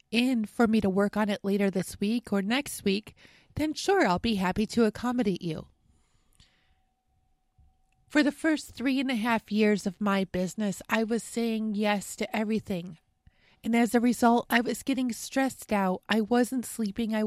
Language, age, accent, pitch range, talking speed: English, 30-49, American, 200-250 Hz, 175 wpm